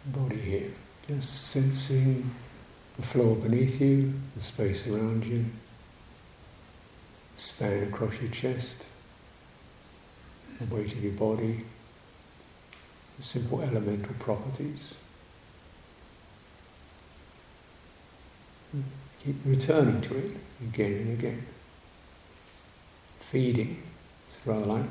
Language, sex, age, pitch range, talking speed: English, male, 60-79, 105-135 Hz, 90 wpm